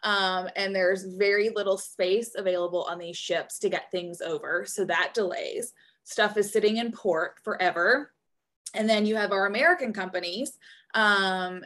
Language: English